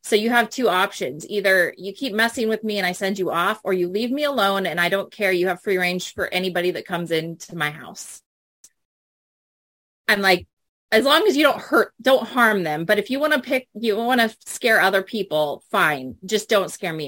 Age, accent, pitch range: 30-49, American, 195-280 Hz